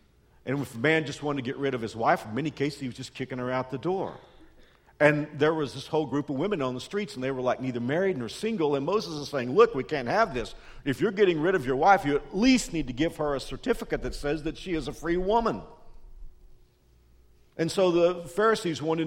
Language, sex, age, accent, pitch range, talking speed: English, male, 50-69, American, 120-190 Hz, 255 wpm